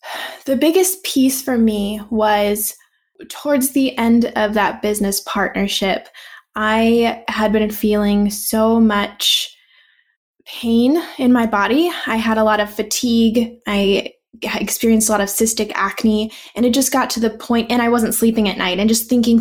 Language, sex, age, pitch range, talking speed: English, female, 10-29, 200-235 Hz, 160 wpm